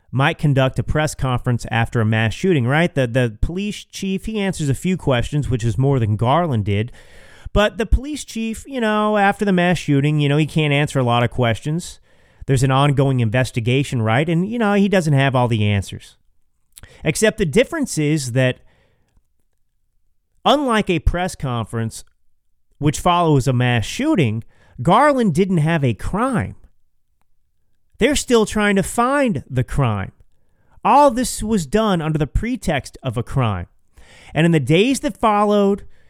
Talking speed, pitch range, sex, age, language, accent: 165 wpm, 115-185 Hz, male, 30-49, English, American